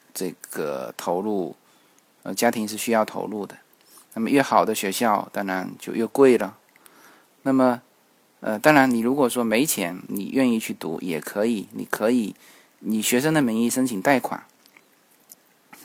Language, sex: Chinese, male